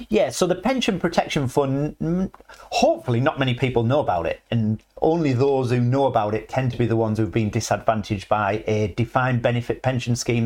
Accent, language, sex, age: British, English, male, 40-59